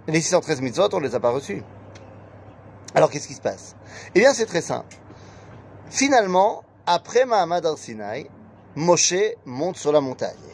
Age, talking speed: 30-49, 160 wpm